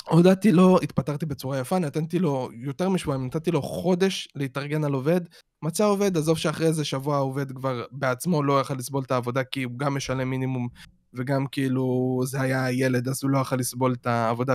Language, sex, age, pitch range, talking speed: Hebrew, male, 20-39, 130-180 Hz, 190 wpm